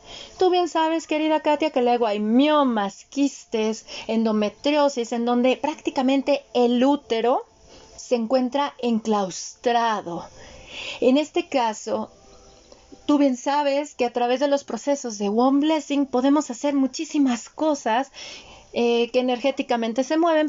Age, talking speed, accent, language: 40-59, 125 wpm, Mexican, Spanish